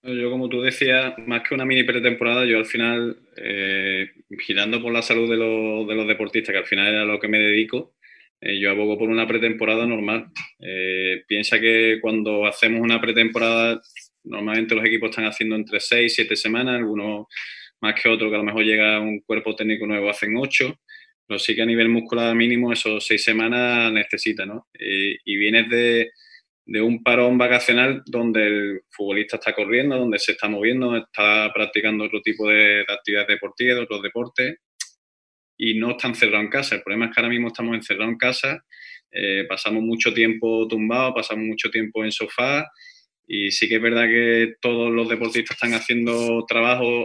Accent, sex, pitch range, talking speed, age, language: Spanish, male, 105-120 Hz, 185 wpm, 20-39, Spanish